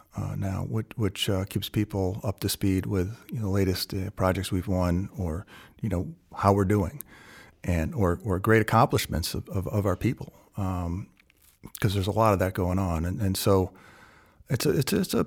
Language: English